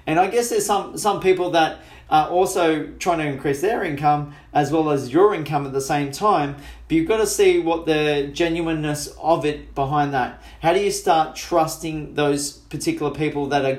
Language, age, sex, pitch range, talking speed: English, 40-59, male, 140-170 Hz, 200 wpm